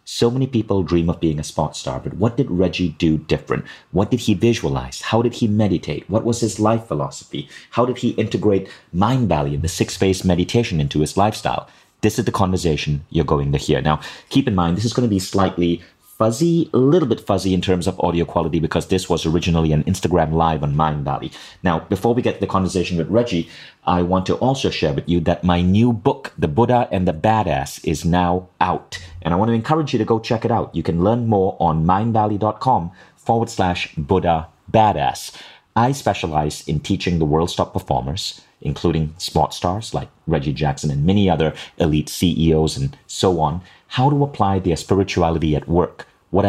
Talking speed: 205 wpm